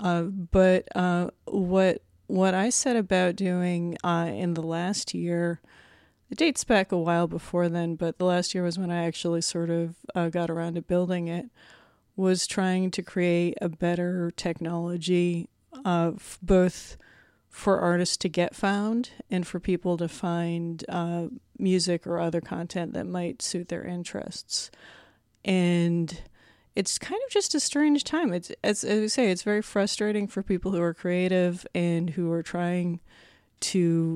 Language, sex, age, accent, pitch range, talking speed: English, female, 30-49, American, 170-190 Hz, 160 wpm